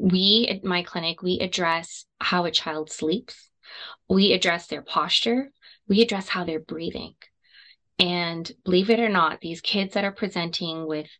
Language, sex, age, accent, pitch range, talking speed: English, female, 20-39, American, 165-205 Hz, 160 wpm